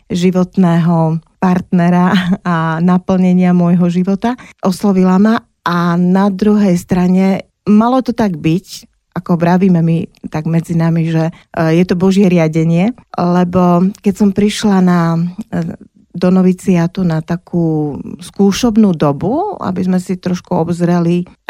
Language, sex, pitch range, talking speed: Slovak, female, 165-190 Hz, 120 wpm